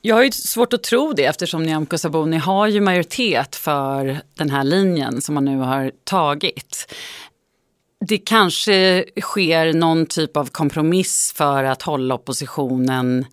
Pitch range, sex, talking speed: 140-175 Hz, female, 150 wpm